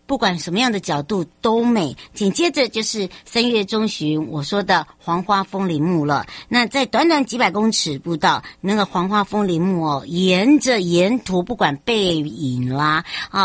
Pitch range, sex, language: 165-220 Hz, male, Chinese